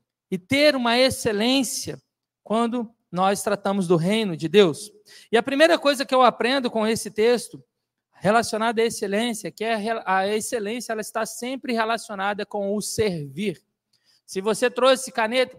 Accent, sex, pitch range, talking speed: Brazilian, male, 230-300 Hz, 140 wpm